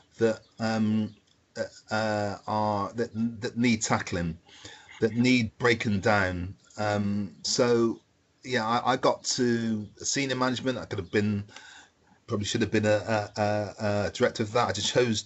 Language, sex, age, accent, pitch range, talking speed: English, male, 40-59, British, 100-115 Hz, 155 wpm